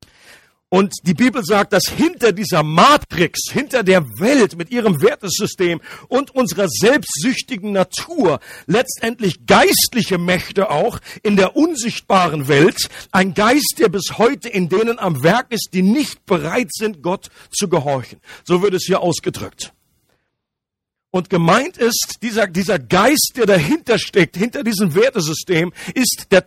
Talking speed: 140 wpm